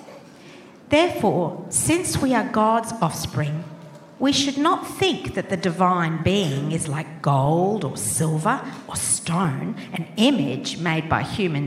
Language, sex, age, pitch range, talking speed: English, female, 50-69, 155-215 Hz, 135 wpm